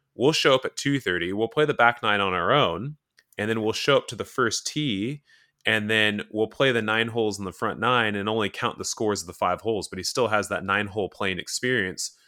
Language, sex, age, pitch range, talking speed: English, male, 20-39, 105-145 Hz, 250 wpm